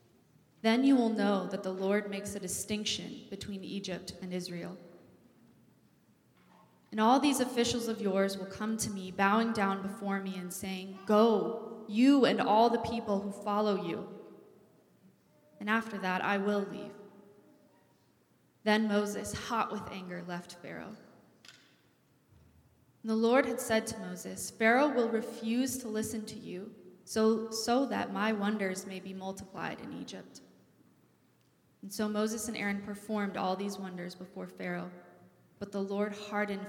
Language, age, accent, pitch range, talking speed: English, 20-39, American, 185-220 Hz, 145 wpm